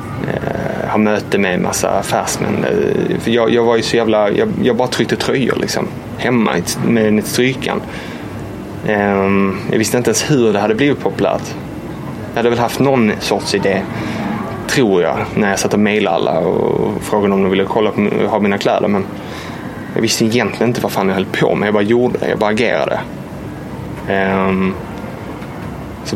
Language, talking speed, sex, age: English, 175 wpm, male, 20-39